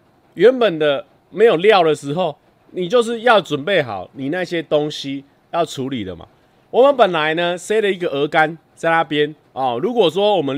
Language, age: Chinese, 30-49